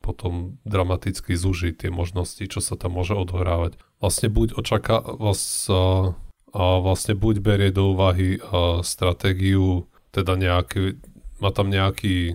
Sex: male